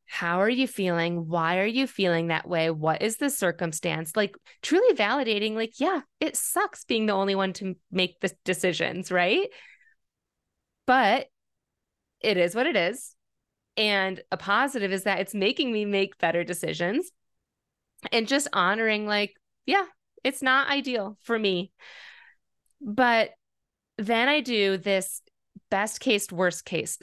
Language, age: English, 20-39